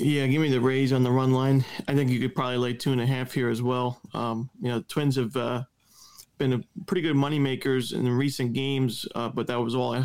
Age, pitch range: 40-59, 120-130 Hz